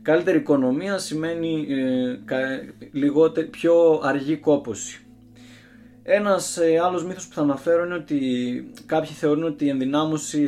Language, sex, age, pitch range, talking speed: Greek, male, 20-39, 125-165 Hz, 130 wpm